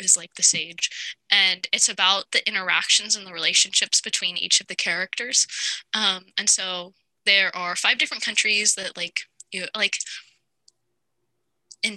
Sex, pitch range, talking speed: female, 195-260 Hz, 150 wpm